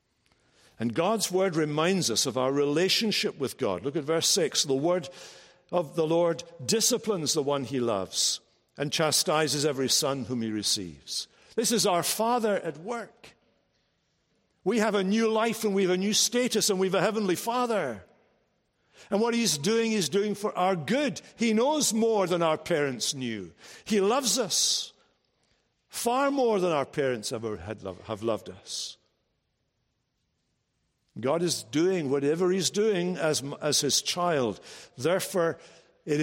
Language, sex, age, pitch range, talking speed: English, male, 60-79, 125-195 Hz, 155 wpm